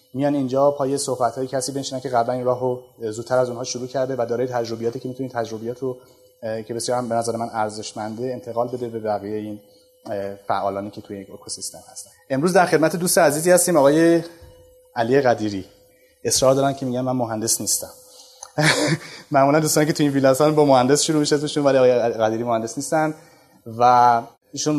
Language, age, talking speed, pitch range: Persian, 30-49, 175 wpm, 115-135 Hz